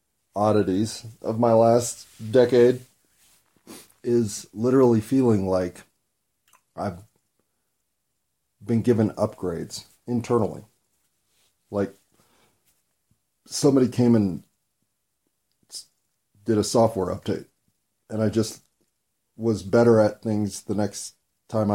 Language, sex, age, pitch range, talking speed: English, male, 40-59, 100-120 Hz, 90 wpm